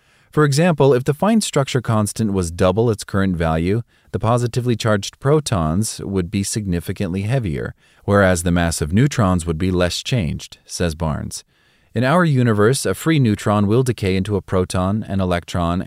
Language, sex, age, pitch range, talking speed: English, male, 30-49, 90-115 Hz, 165 wpm